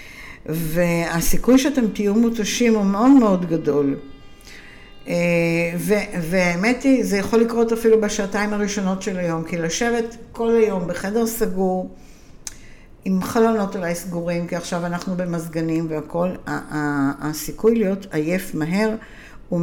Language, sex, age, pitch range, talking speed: Hebrew, female, 60-79, 165-215 Hz, 120 wpm